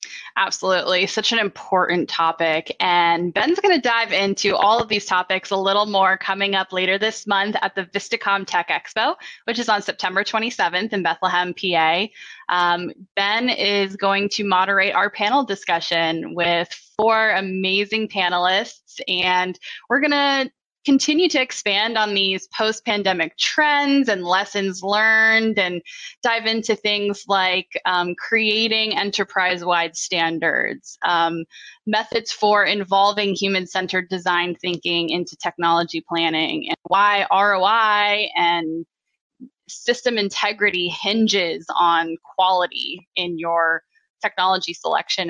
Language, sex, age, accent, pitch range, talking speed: English, female, 10-29, American, 180-215 Hz, 125 wpm